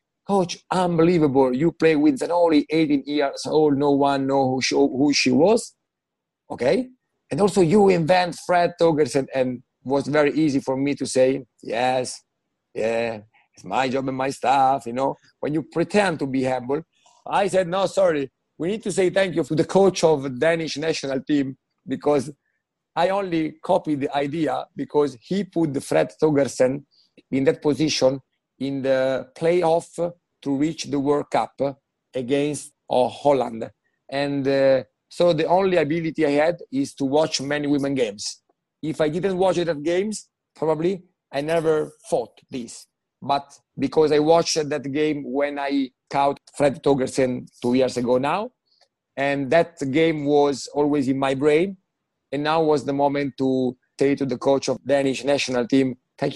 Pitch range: 135-165 Hz